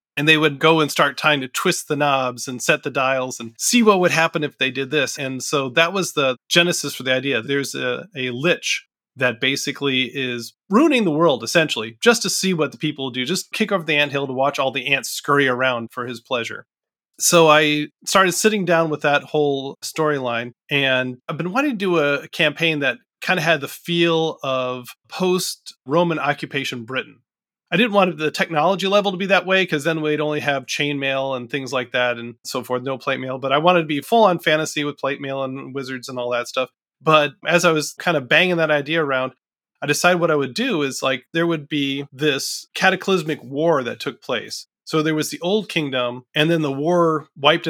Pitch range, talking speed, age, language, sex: 130-165 Hz, 220 wpm, 30-49, English, male